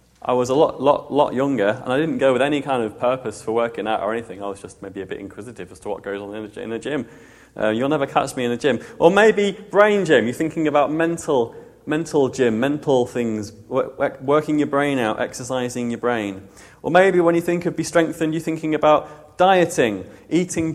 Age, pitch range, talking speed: 30-49, 110-170 Hz, 230 wpm